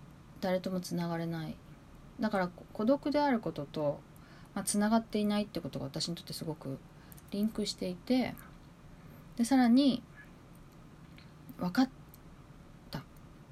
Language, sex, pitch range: Japanese, female, 155-220 Hz